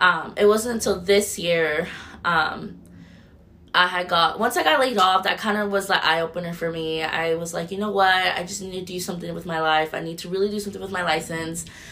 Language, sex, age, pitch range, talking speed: English, female, 20-39, 175-210 Hz, 240 wpm